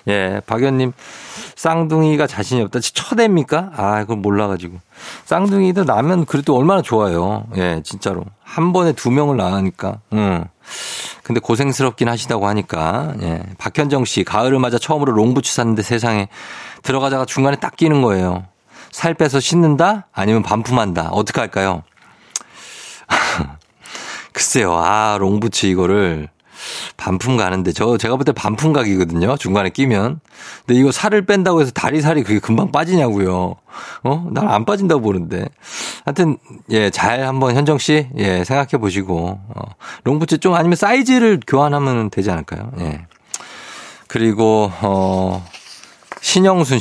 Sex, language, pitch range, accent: male, Korean, 100-150 Hz, native